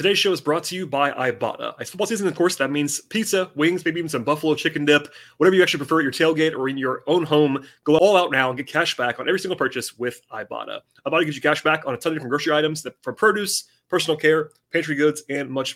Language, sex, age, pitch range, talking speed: English, male, 30-49, 140-165 Hz, 265 wpm